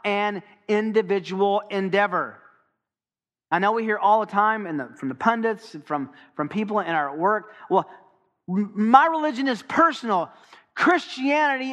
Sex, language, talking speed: male, English, 140 wpm